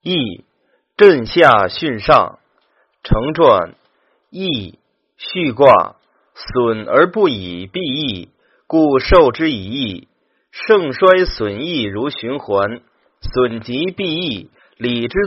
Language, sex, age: Chinese, male, 30-49